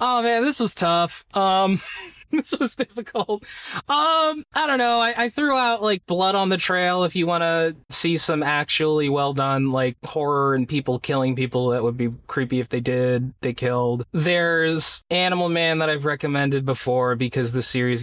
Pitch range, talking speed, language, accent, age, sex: 130-190 Hz, 185 wpm, English, American, 20-39, male